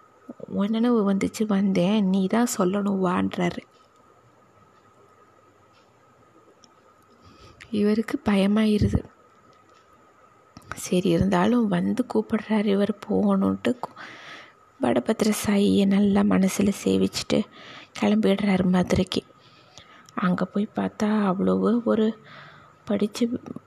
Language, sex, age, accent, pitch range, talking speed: Tamil, female, 20-39, native, 200-250 Hz, 75 wpm